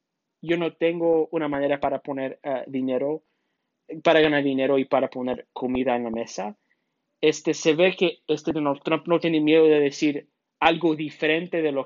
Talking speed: 175 wpm